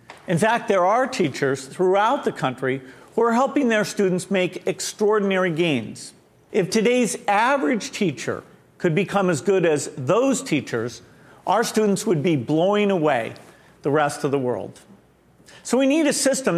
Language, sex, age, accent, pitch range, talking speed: English, male, 50-69, American, 155-210 Hz, 155 wpm